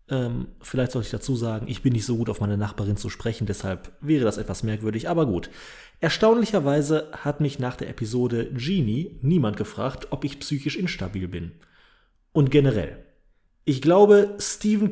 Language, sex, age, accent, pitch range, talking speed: German, male, 30-49, German, 115-160 Hz, 165 wpm